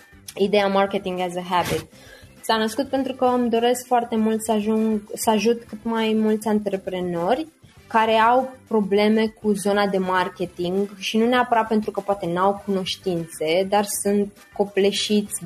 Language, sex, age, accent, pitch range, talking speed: Romanian, female, 20-39, native, 175-220 Hz, 150 wpm